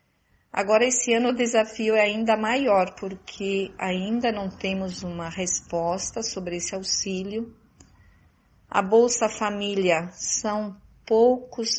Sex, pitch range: female, 175-220 Hz